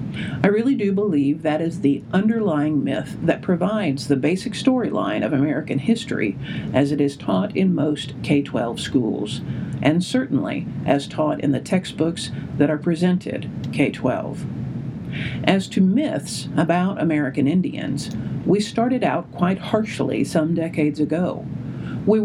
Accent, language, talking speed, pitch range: American, English, 140 wpm, 155-205 Hz